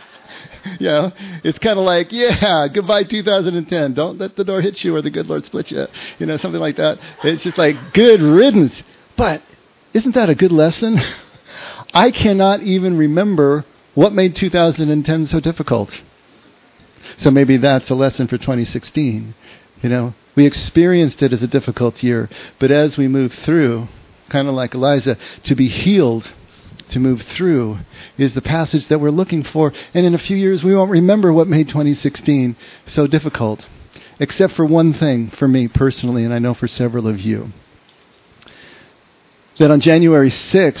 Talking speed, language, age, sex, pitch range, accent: 170 wpm, English, 50-69, male, 125-160 Hz, American